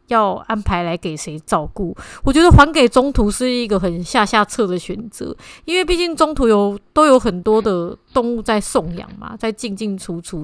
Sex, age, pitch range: female, 30-49, 190-240 Hz